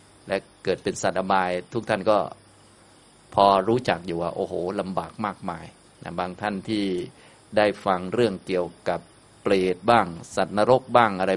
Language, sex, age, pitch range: Thai, male, 20-39, 95-115 Hz